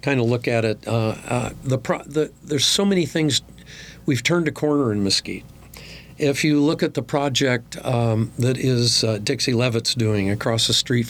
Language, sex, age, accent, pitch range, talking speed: English, male, 50-69, American, 110-135 Hz, 180 wpm